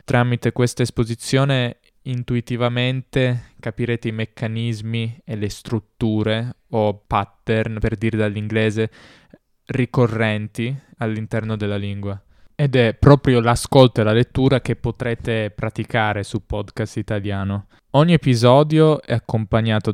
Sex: male